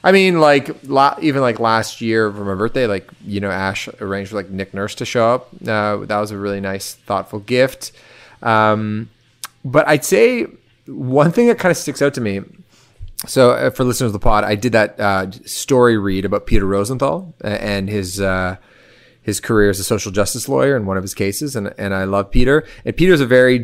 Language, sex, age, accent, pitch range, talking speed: English, male, 30-49, American, 100-125 Hz, 210 wpm